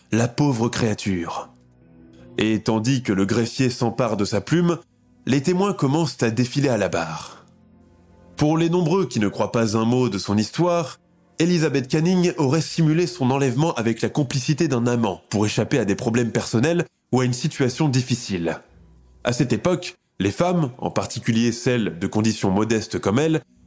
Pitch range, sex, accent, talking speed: 115-165 Hz, male, French, 170 wpm